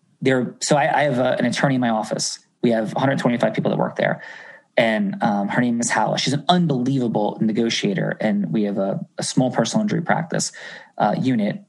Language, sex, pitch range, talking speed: English, male, 125-205 Hz, 200 wpm